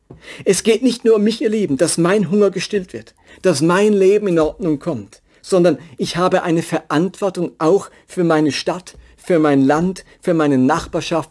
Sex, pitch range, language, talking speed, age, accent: male, 135-185 Hz, German, 180 wpm, 50-69, German